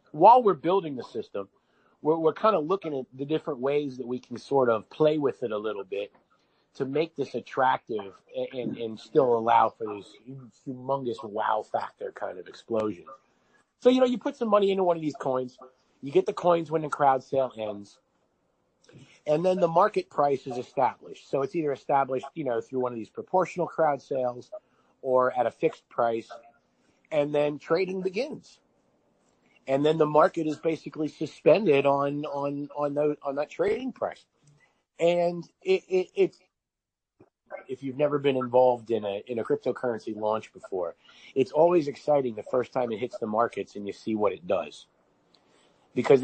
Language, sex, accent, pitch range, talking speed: English, male, American, 130-170 Hz, 180 wpm